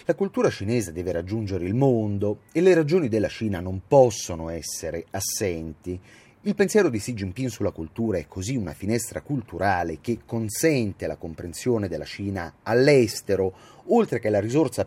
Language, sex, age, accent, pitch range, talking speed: Italian, male, 30-49, native, 90-125 Hz, 155 wpm